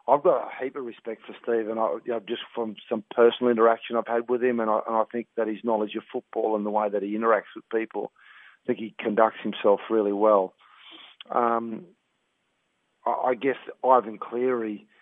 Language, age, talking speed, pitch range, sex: English, 40-59, 210 wpm, 105-120 Hz, male